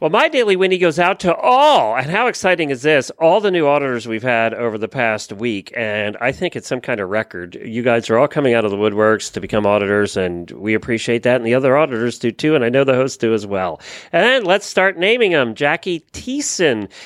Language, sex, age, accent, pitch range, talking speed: English, male, 40-59, American, 120-180 Hz, 245 wpm